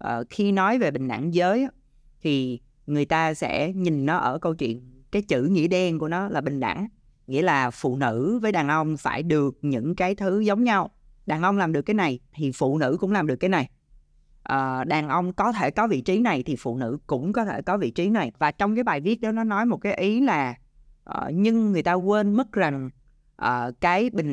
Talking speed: 220 wpm